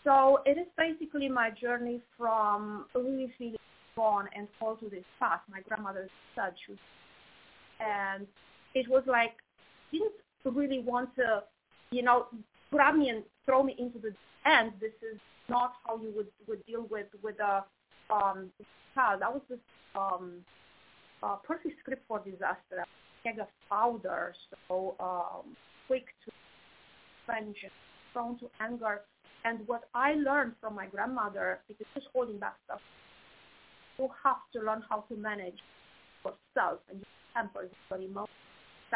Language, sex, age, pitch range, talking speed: English, female, 30-49, 205-250 Hz, 150 wpm